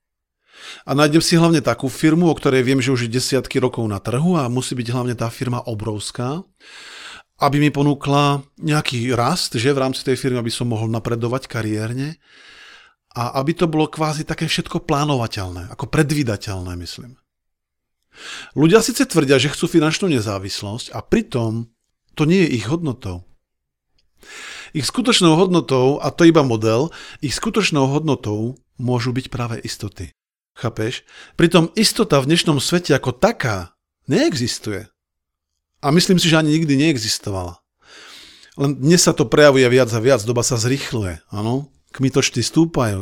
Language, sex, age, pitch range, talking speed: Slovak, male, 50-69, 115-155 Hz, 150 wpm